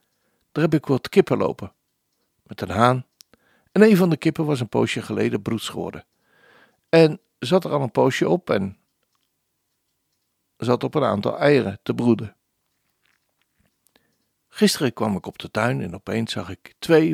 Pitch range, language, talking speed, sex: 105-155 Hz, Dutch, 160 wpm, male